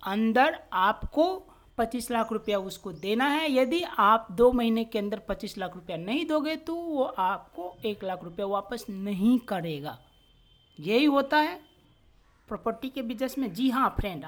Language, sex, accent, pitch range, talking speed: Hindi, female, native, 210-275 Hz, 160 wpm